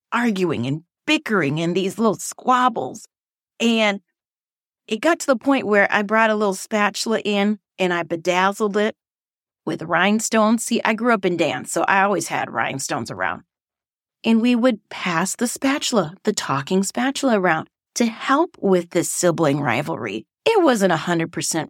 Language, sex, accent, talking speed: English, female, American, 155 wpm